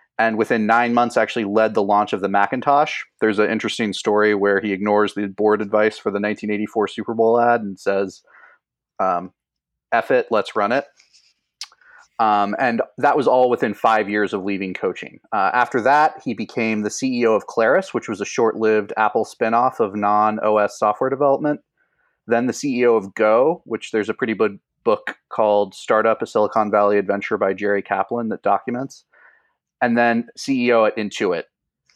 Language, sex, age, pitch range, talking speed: English, male, 30-49, 100-115 Hz, 175 wpm